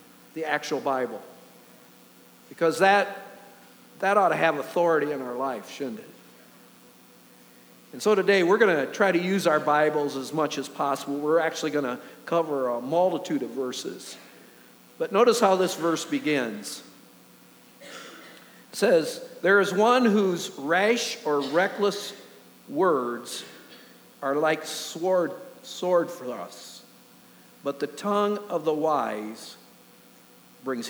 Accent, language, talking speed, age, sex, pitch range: American, English, 130 wpm, 50-69, male, 140-185 Hz